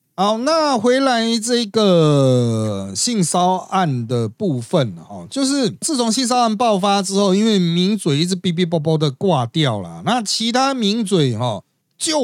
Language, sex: Chinese, male